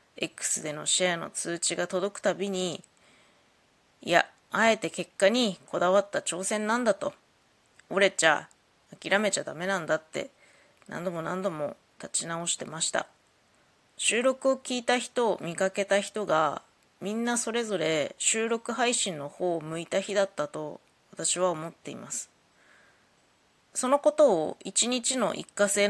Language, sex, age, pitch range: Japanese, female, 20-39, 180-245 Hz